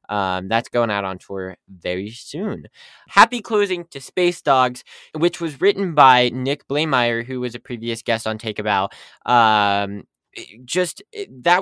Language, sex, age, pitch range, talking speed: English, male, 10-29, 120-160 Hz, 155 wpm